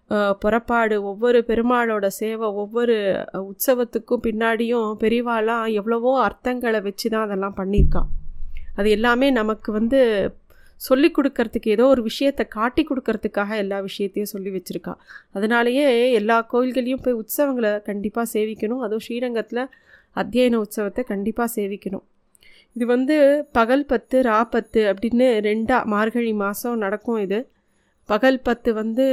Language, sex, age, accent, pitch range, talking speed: Tamil, female, 20-39, native, 210-245 Hz, 115 wpm